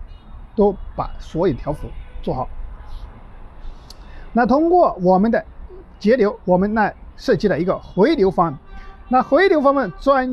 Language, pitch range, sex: Chinese, 155-240 Hz, male